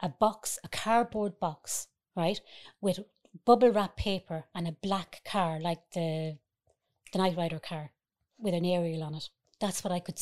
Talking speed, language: 170 wpm, English